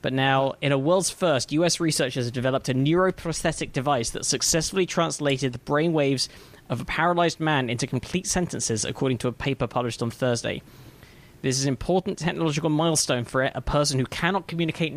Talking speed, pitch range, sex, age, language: 175 wpm, 125-155 Hz, male, 10-29, English